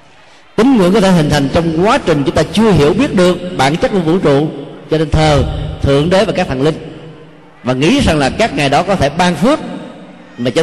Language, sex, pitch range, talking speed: Vietnamese, male, 155-200 Hz, 235 wpm